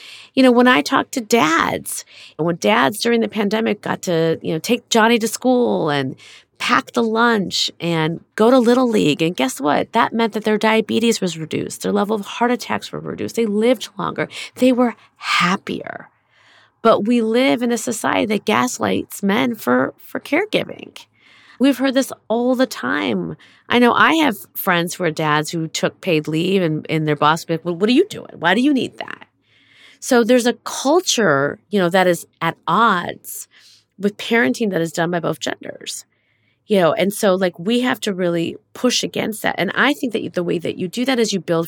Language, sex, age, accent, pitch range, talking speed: English, female, 40-59, American, 165-235 Hz, 205 wpm